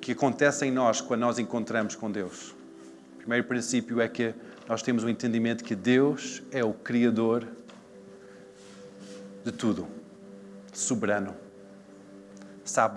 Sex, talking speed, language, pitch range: male, 130 wpm, Portuguese, 80-125 Hz